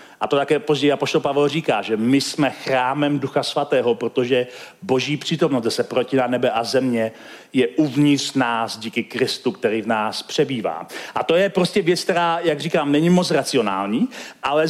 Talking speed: 175 wpm